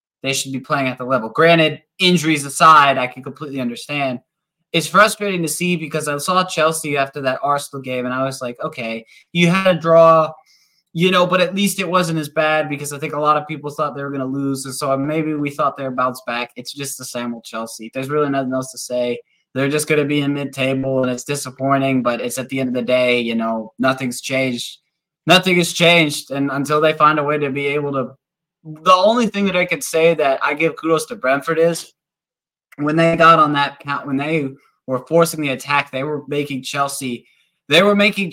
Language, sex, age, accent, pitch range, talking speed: English, male, 20-39, American, 130-165 Hz, 230 wpm